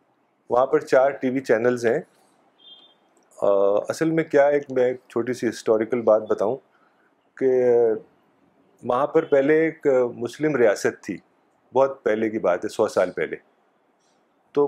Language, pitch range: Urdu, 120-150 Hz